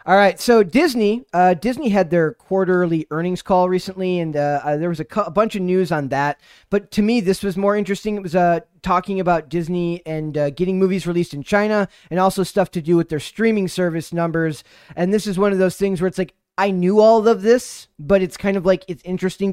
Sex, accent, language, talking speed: male, American, English, 235 wpm